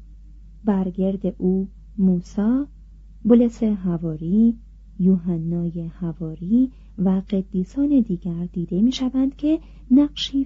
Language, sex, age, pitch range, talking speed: Persian, female, 30-49, 180-225 Hz, 85 wpm